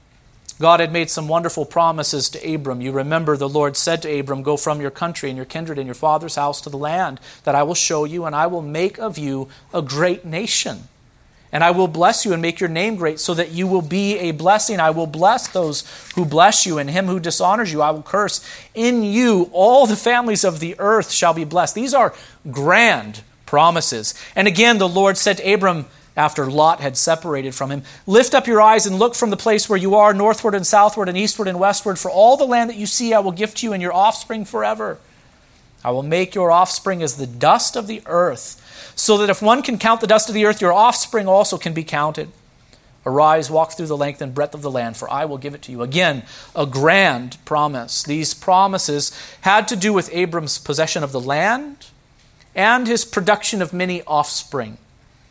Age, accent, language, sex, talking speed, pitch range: 40-59, American, English, male, 220 wpm, 150-205 Hz